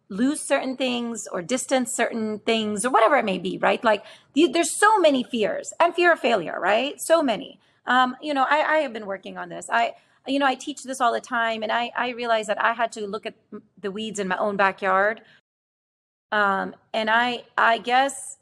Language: English